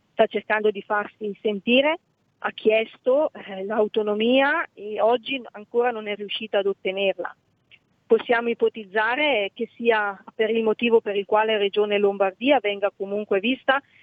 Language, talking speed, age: Italian, 135 wpm, 40-59